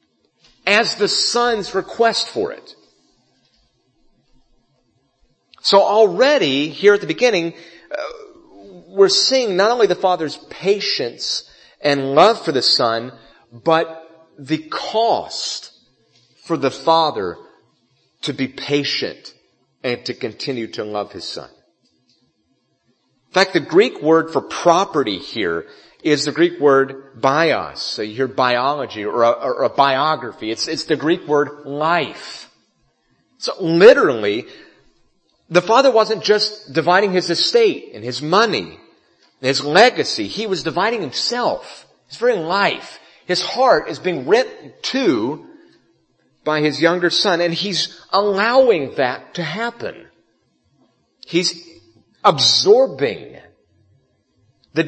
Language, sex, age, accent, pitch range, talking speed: English, male, 40-59, American, 150-240 Hz, 120 wpm